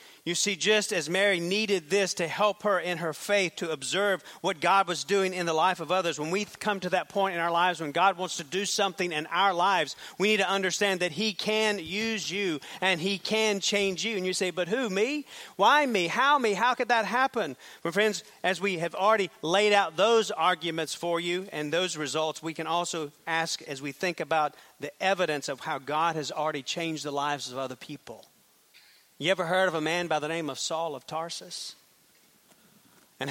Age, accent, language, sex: 40-59, American, English, male